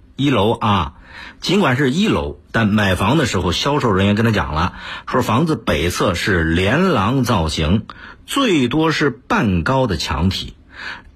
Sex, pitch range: male, 90-130 Hz